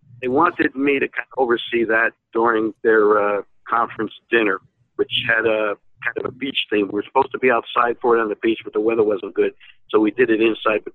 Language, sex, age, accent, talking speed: English, male, 50-69, American, 235 wpm